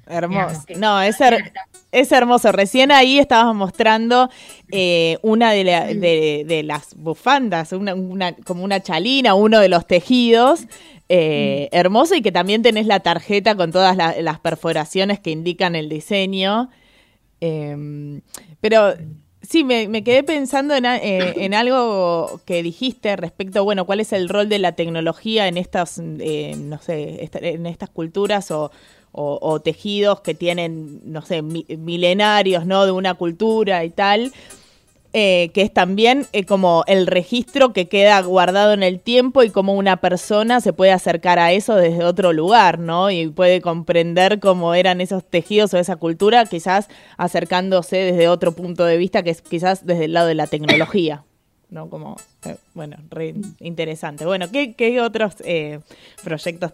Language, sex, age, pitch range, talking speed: Spanish, female, 20-39, 170-210 Hz, 155 wpm